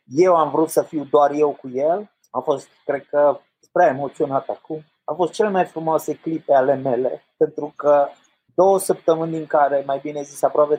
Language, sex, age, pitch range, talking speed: Romanian, male, 30-49, 130-155 Hz, 190 wpm